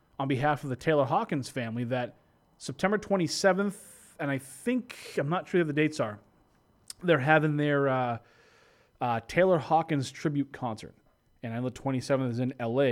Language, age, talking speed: English, 30-49, 165 wpm